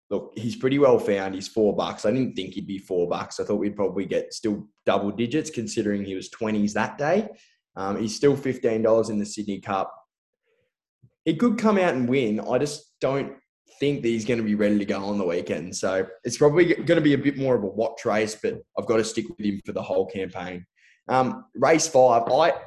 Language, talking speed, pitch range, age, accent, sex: English, 230 wpm, 105-140 Hz, 20-39, Australian, male